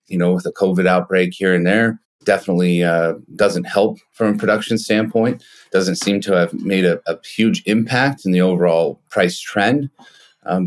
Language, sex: English, male